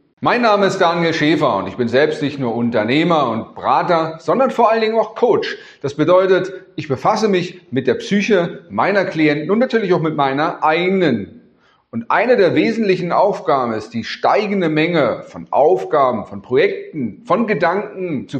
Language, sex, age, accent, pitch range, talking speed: German, male, 30-49, German, 135-200 Hz, 170 wpm